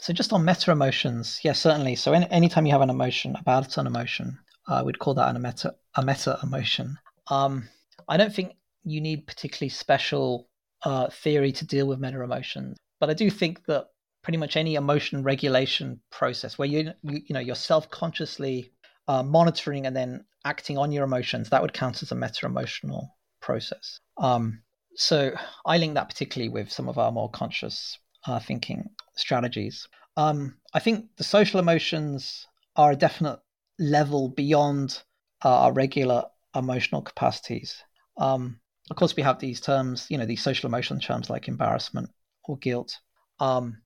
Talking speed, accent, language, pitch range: 170 wpm, British, English, 125-160 Hz